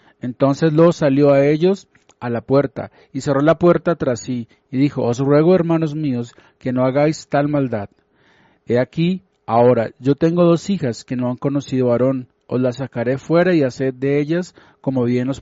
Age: 40-59